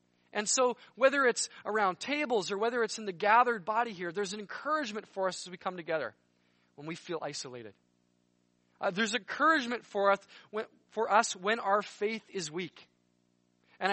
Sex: male